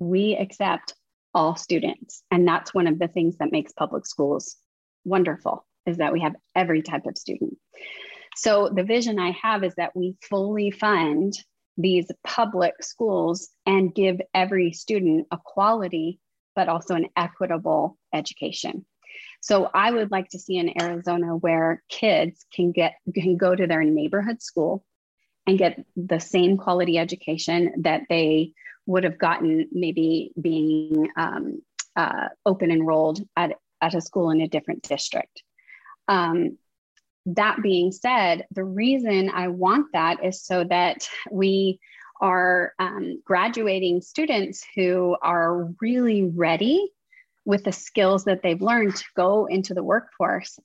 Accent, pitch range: American, 170-200 Hz